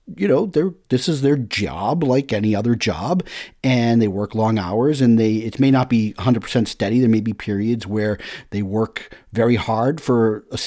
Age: 40-59